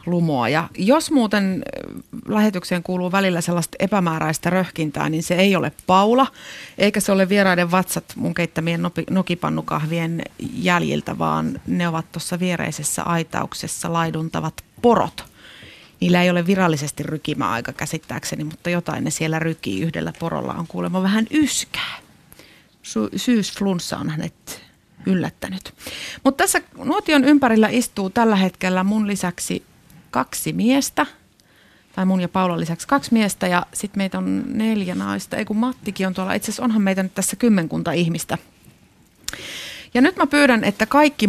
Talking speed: 140 wpm